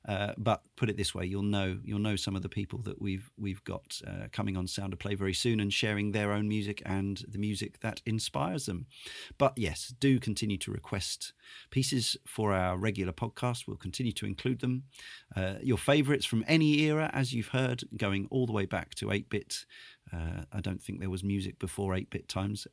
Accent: British